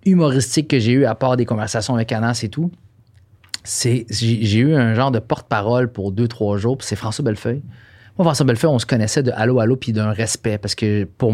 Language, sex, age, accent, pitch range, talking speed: French, male, 30-49, Canadian, 110-140 Hz, 230 wpm